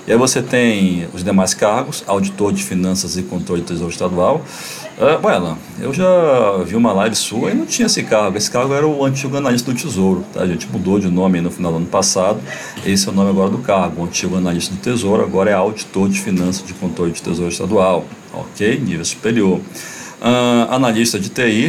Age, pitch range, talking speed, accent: 40-59, 90-115 Hz, 215 wpm, Brazilian